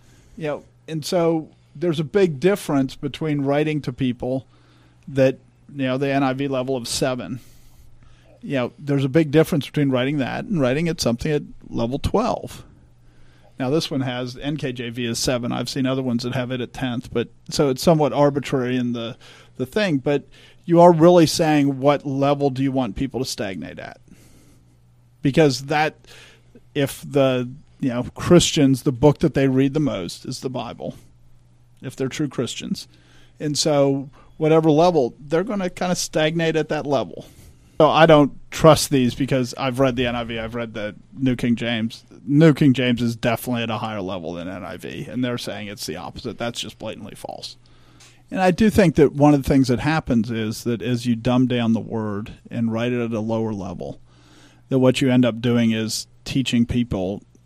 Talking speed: 190 wpm